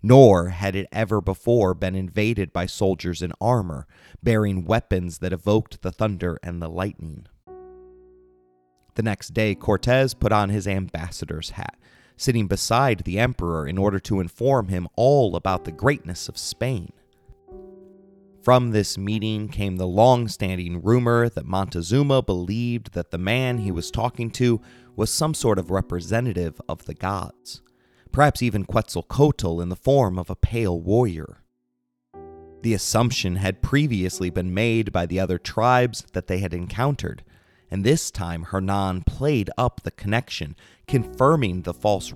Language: English